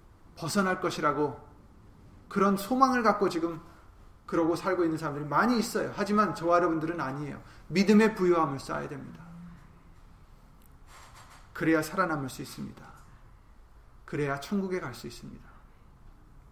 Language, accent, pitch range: Korean, native, 125-180 Hz